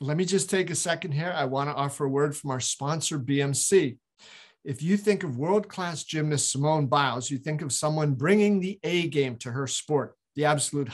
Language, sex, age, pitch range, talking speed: English, male, 50-69, 135-170 Hz, 210 wpm